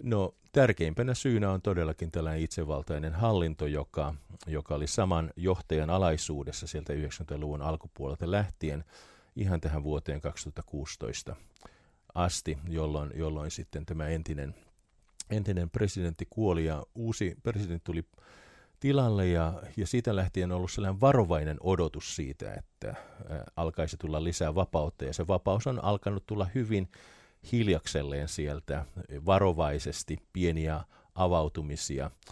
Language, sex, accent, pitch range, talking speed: Finnish, male, native, 80-95 Hz, 115 wpm